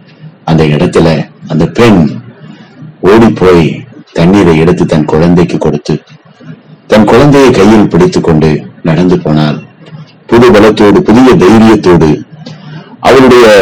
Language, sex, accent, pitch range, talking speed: Tamil, male, native, 90-145 Hz, 100 wpm